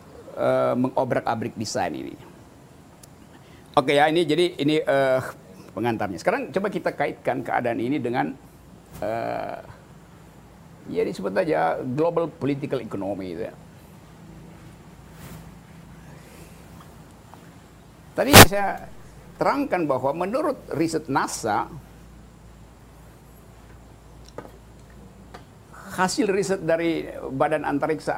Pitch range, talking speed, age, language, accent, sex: 135-185 Hz, 85 wpm, 50-69, Indonesian, native, male